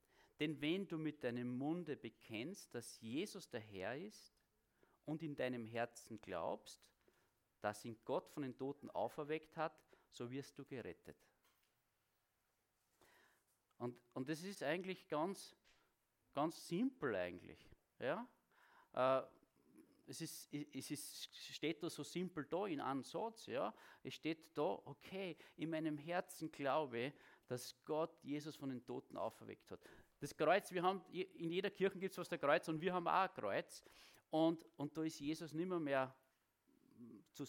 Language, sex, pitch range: German, male, 130-170 Hz